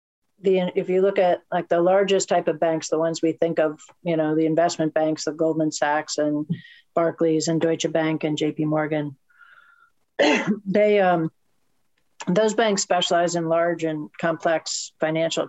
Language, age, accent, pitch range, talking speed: English, 50-69, American, 155-185 Hz, 165 wpm